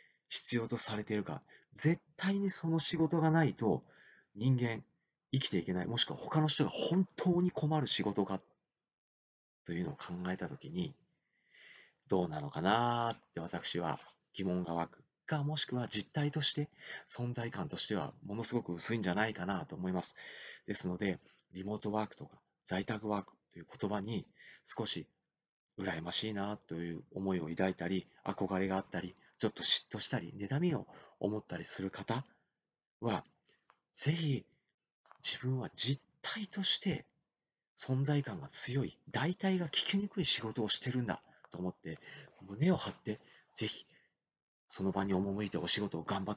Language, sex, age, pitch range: Japanese, male, 40-59, 95-145 Hz